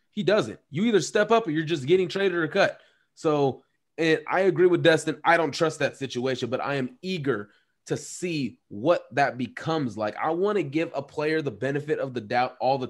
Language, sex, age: English, male, 20-39